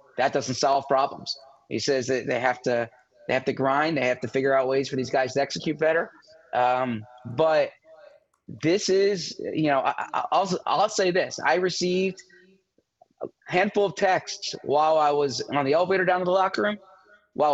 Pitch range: 135-180 Hz